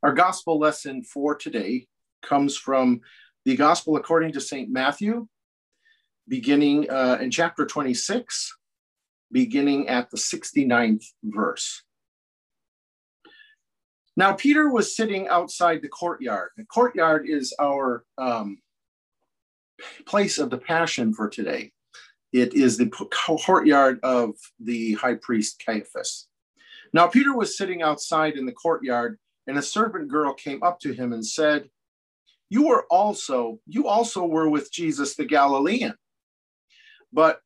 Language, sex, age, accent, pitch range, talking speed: English, male, 50-69, American, 135-215 Hz, 125 wpm